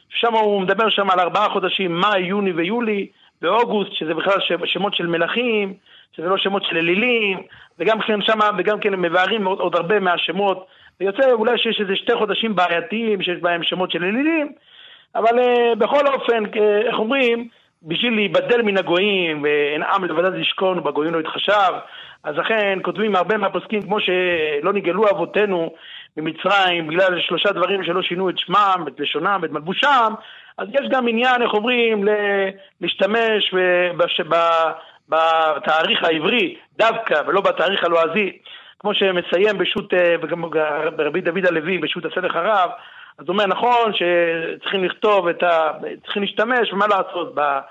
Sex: male